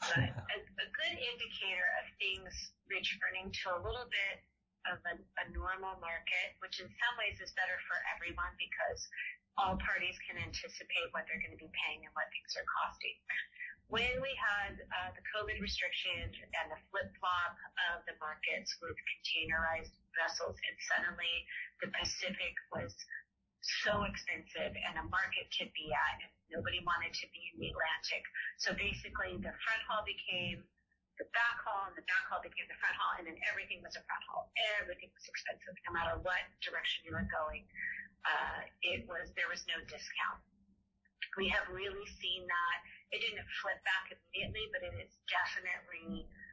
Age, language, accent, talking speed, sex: 30-49, English, American, 170 wpm, female